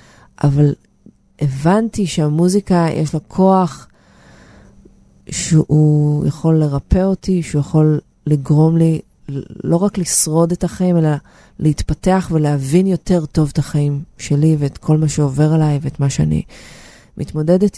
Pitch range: 145-180 Hz